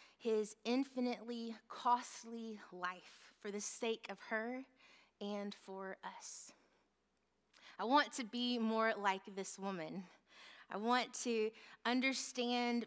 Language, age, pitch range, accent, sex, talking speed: English, 20-39, 195-250 Hz, American, female, 110 wpm